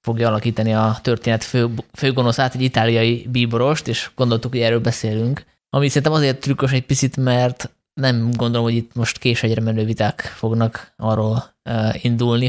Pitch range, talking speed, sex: 115-130 Hz, 155 wpm, male